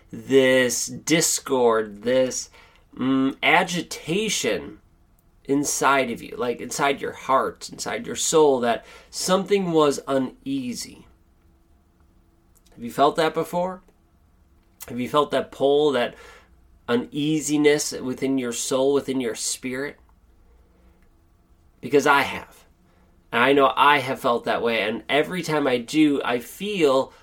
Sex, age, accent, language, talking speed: male, 30-49, American, English, 120 wpm